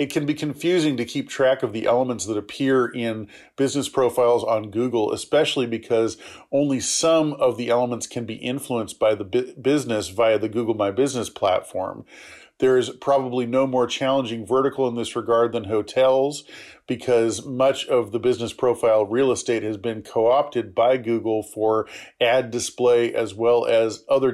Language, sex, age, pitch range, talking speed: English, male, 40-59, 115-135 Hz, 170 wpm